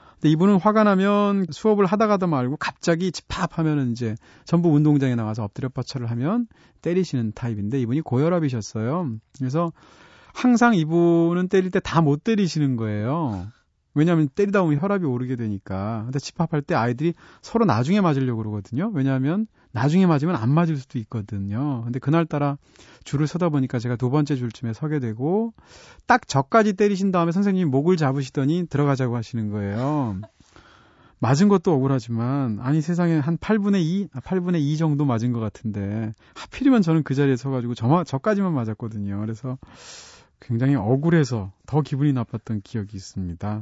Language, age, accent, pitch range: Korean, 30-49, native, 115-170 Hz